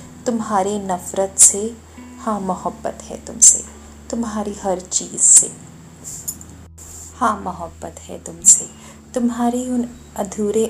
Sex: female